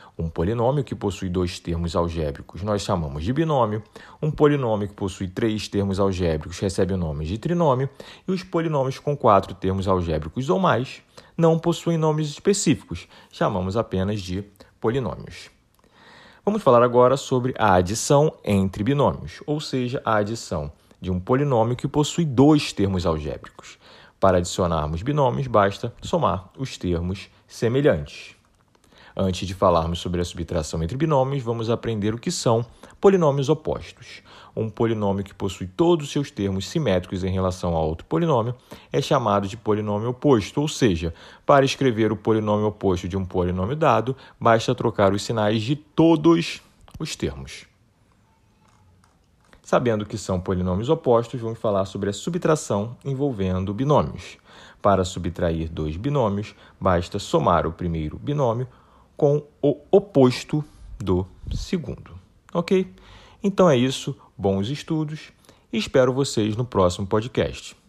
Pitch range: 95-140 Hz